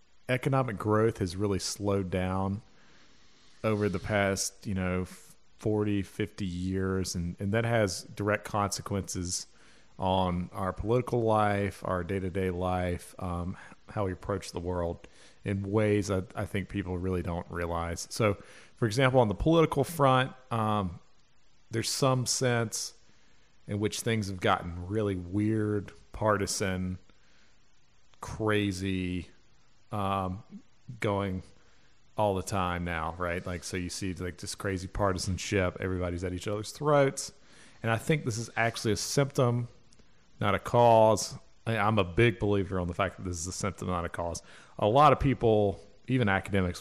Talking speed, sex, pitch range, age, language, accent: 150 wpm, male, 90-110 Hz, 40-59, English, American